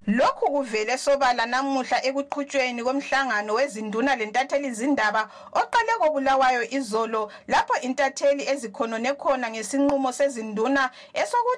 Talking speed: 115 wpm